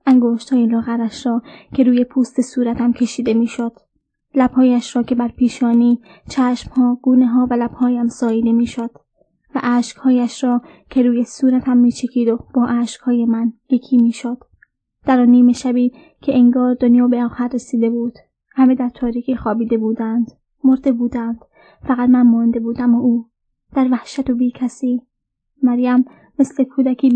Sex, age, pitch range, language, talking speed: female, 20-39, 240-255 Hz, Persian, 150 wpm